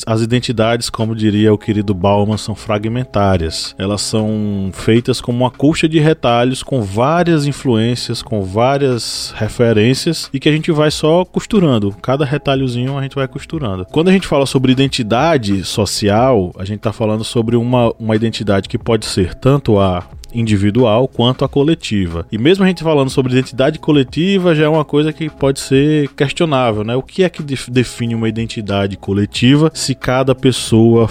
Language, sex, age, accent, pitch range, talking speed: Portuguese, male, 20-39, Brazilian, 110-150 Hz, 170 wpm